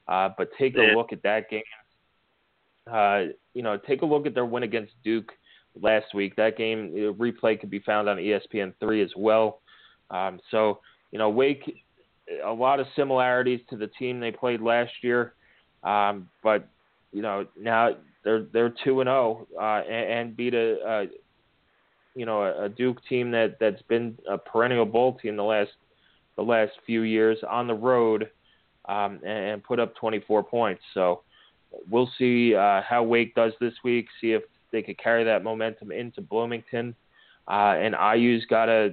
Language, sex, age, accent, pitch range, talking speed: English, male, 20-39, American, 110-120 Hz, 175 wpm